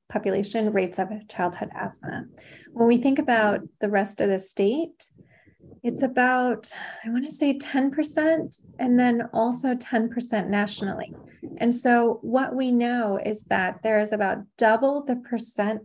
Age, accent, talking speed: 20-39, American, 150 wpm